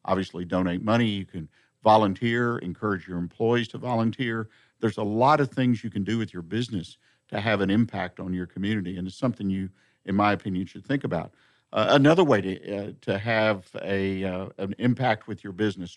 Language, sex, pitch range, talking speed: English, male, 100-125 Hz, 200 wpm